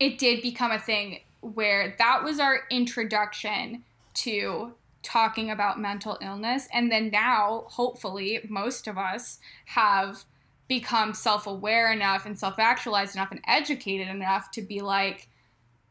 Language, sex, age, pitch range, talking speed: English, female, 10-29, 205-250 Hz, 130 wpm